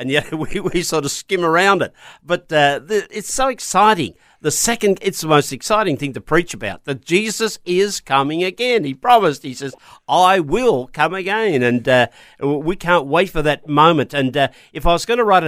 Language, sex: English, male